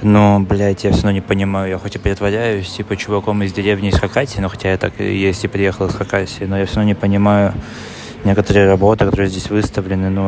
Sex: male